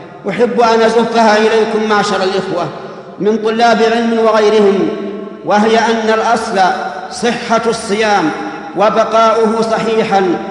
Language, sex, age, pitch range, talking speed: Arabic, male, 50-69, 190-220 Hz, 95 wpm